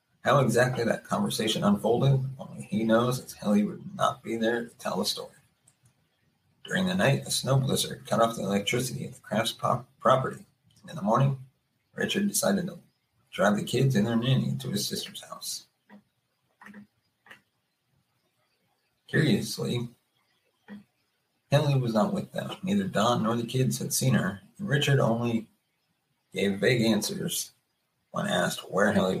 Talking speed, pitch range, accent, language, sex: 150 wpm, 110-165 Hz, American, English, male